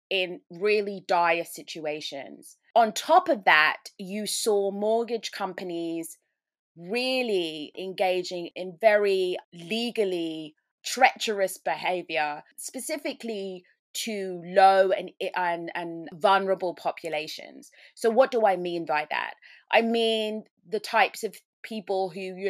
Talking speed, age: 115 wpm, 20-39